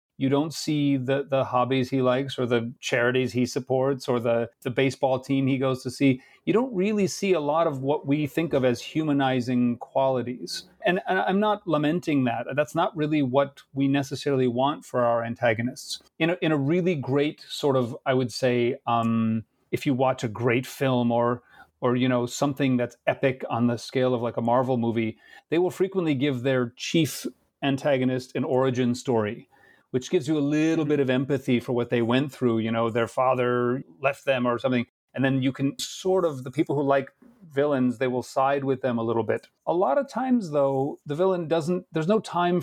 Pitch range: 125-155 Hz